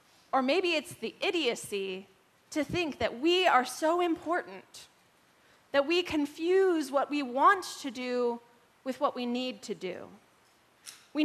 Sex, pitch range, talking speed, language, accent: female, 250-330 Hz, 145 wpm, English, American